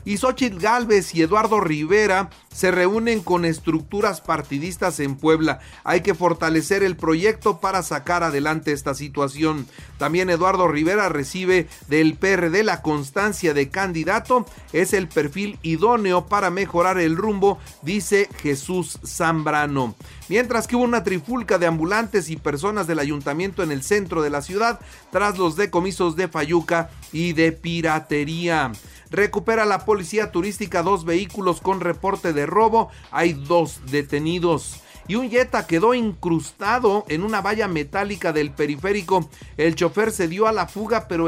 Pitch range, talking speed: 160-205 Hz, 145 wpm